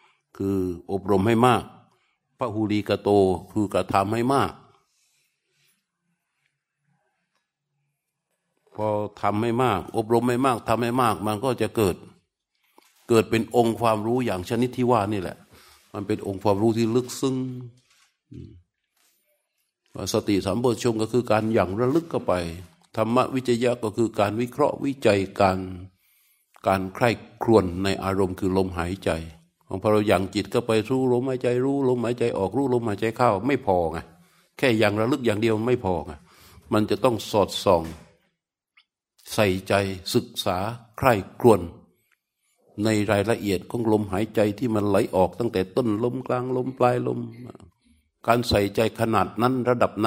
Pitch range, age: 100-125 Hz, 60-79